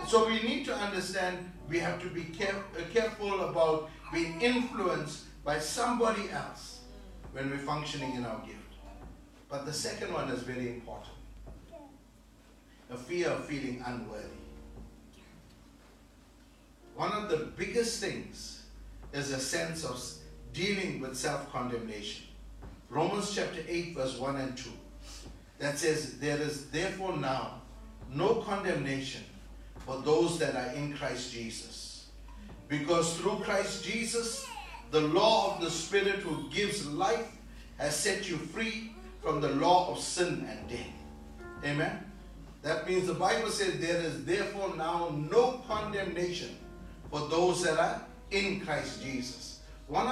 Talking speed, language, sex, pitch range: 135 wpm, English, male, 125-185 Hz